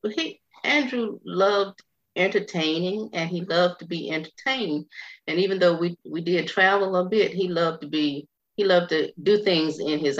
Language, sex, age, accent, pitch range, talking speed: English, female, 30-49, American, 135-170 Hz, 180 wpm